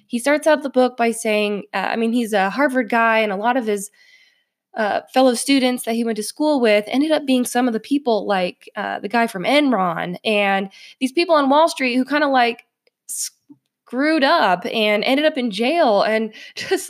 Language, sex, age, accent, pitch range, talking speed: English, female, 10-29, American, 210-280 Hz, 215 wpm